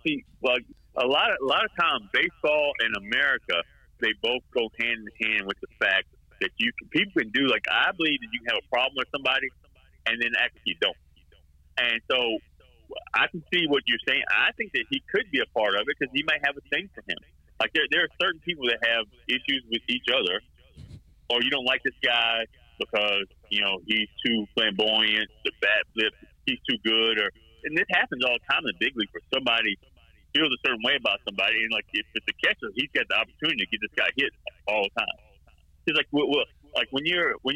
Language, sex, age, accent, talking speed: English, male, 30-49, American, 230 wpm